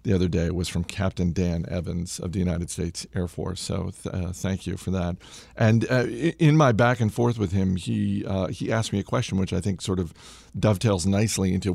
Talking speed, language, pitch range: 225 wpm, English, 95-120 Hz